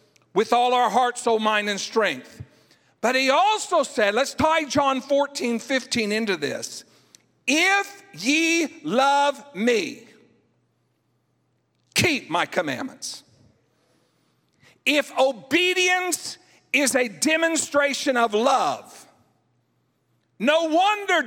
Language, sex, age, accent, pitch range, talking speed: English, male, 50-69, American, 205-285 Hz, 100 wpm